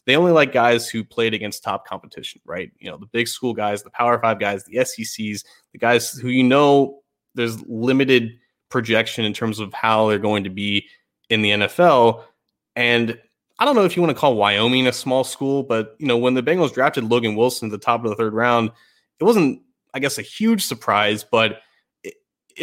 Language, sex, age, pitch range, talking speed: English, male, 20-39, 110-135 Hz, 210 wpm